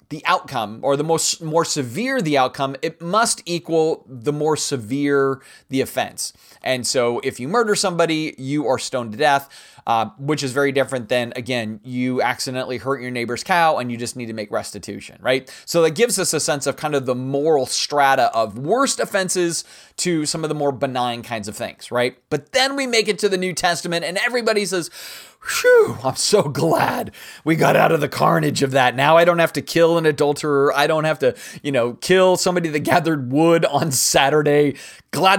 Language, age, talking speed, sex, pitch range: English, 30-49, 205 wpm, male, 130-180 Hz